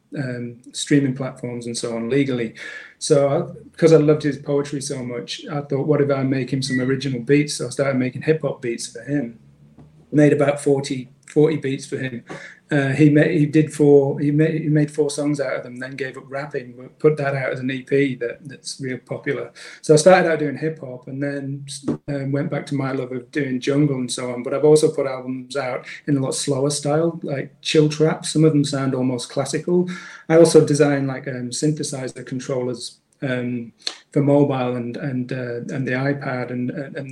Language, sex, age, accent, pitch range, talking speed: English, male, 30-49, British, 130-150 Hz, 210 wpm